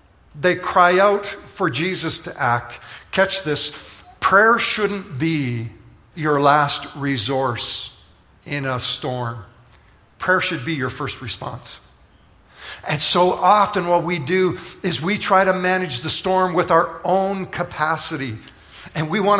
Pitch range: 125-180 Hz